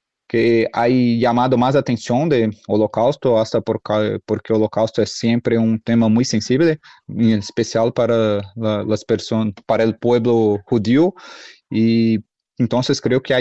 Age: 30-49